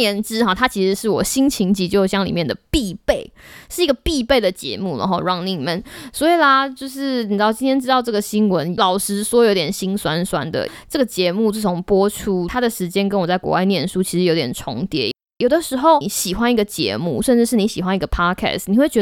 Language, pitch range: Chinese, 185-250 Hz